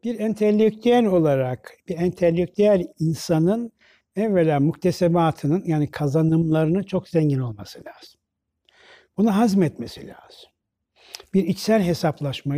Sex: male